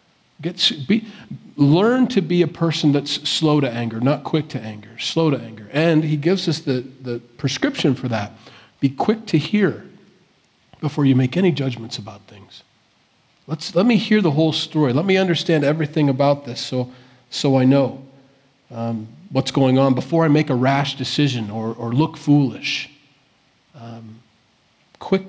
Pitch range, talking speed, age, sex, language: 125-165 Hz, 160 wpm, 40-59, male, English